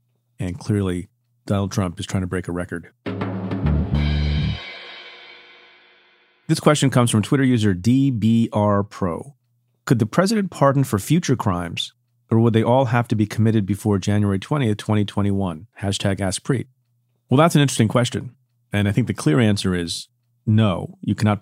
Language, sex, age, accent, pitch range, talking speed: English, male, 40-59, American, 100-120 Hz, 155 wpm